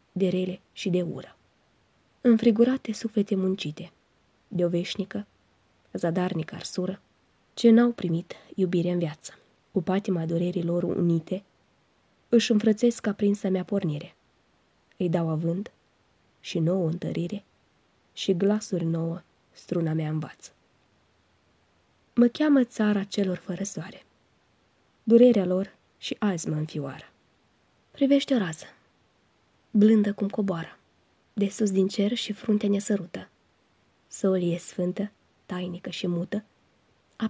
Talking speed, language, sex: 115 wpm, Romanian, female